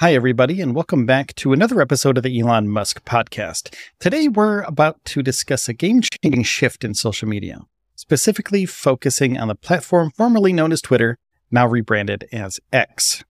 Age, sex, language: 40-59, male, English